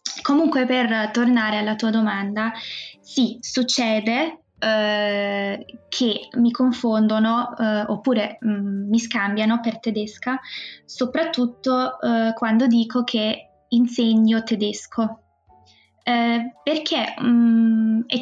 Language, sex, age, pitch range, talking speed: Italian, female, 20-39, 220-245 Hz, 90 wpm